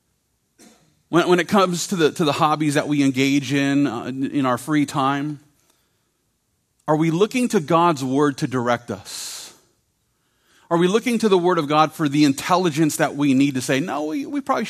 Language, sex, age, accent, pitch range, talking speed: English, male, 40-59, American, 130-175 Hz, 185 wpm